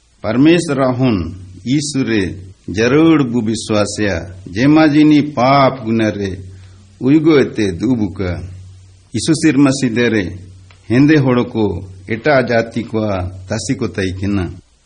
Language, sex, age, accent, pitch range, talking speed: Hindi, male, 60-79, native, 95-125 Hz, 60 wpm